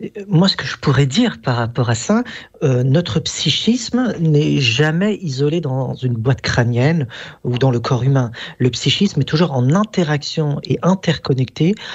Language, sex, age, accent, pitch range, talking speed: French, male, 40-59, French, 130-190 Hz, 165 wpm